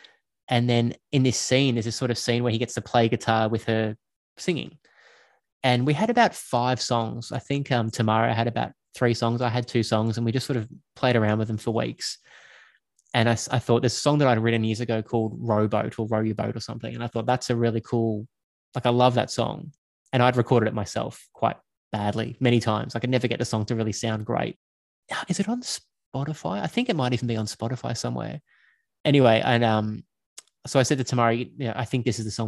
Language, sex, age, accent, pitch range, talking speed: English, male, 20-39, Australian, 110-125 Hz, 235 wpm